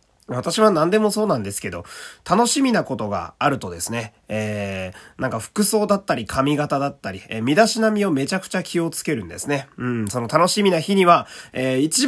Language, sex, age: Japanese, male, 20-39